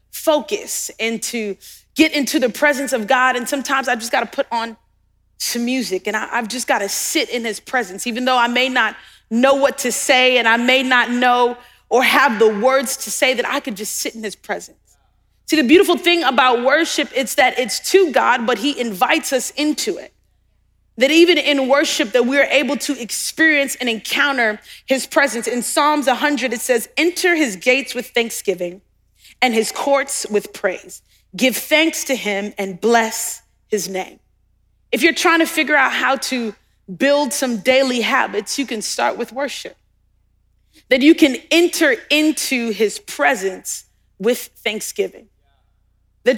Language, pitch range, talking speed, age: English, 230-290 Hz, 175 wpm, 30-49